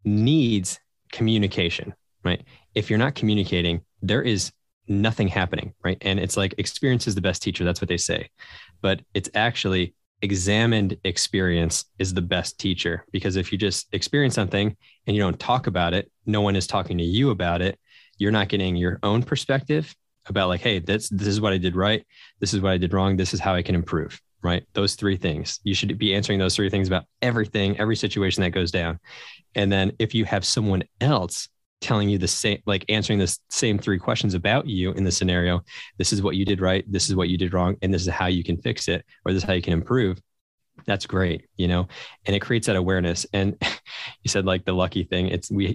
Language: English